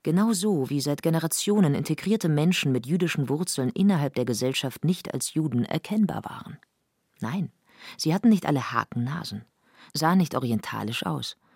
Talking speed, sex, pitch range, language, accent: 145 wpm, female, 130-175 Hz, German, German